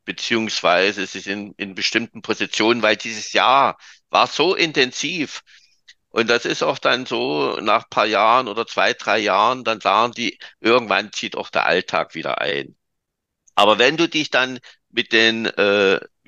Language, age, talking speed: German, 50-69, 165 wpm